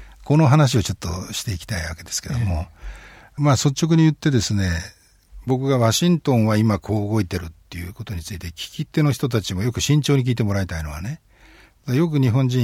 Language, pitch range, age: Japanese, 95-130 Hz, 60-79